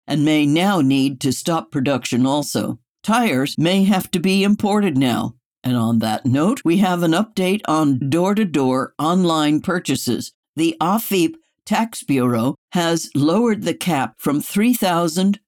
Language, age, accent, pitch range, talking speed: English, 60-79, American, 140-195 Hz, 145 wpm